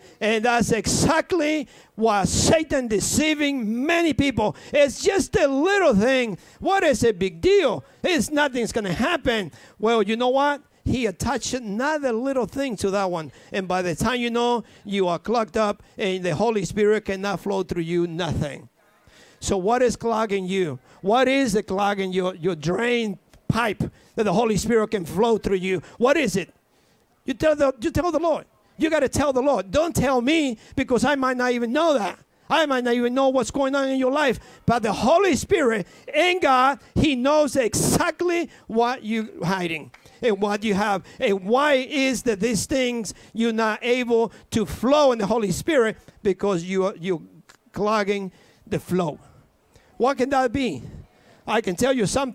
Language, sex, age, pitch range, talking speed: English, male, 50-69, 200-270 Hz, 180 wpm